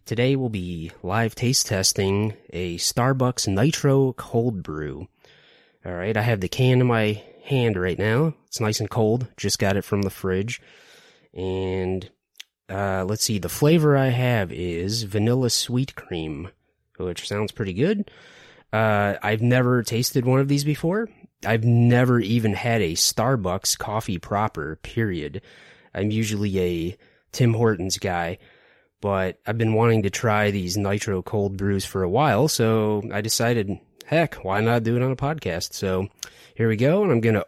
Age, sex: 20-39, male